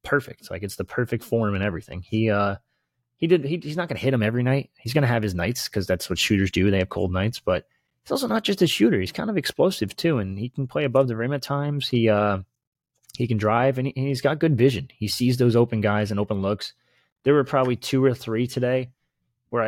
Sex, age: male, 30-49